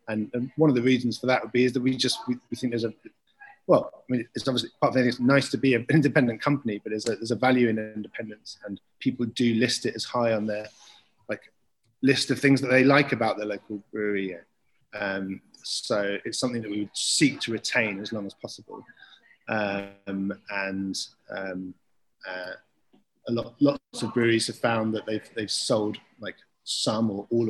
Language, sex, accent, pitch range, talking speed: English, male, British, 105-125 Hz, 200 wpm